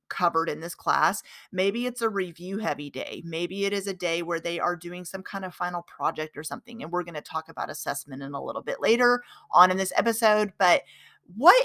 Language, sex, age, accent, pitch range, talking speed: English, female, 30-49, American, 165-230 Hz, 225 wpm